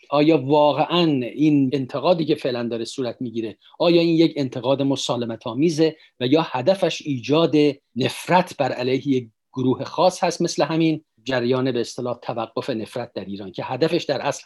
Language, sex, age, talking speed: Persian, male, 50-69, 160 wpm